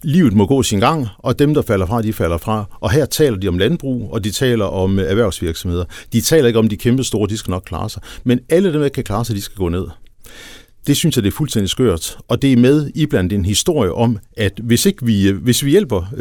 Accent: native